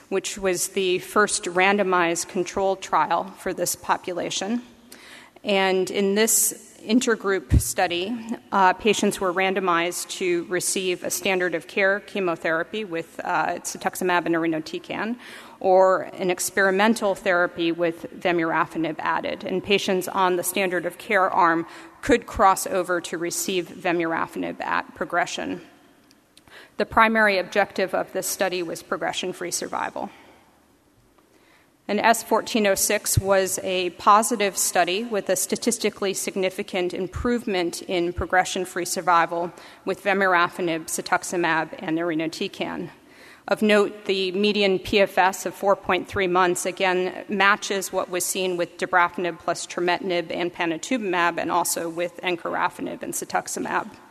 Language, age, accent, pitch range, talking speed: English, 40-59, American, 175-200 Hz, 120 wpm